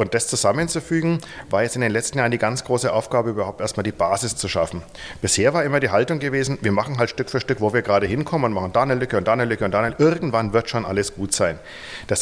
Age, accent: 40-59, German